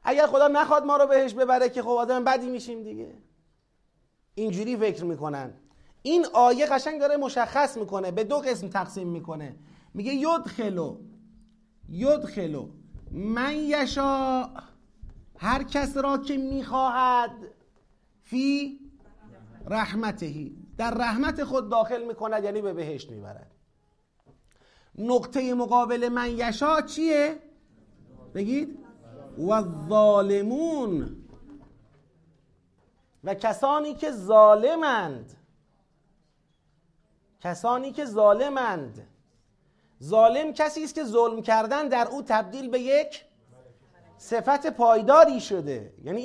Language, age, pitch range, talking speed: Persian, 30-49, 195-270 Hz, 100 wpm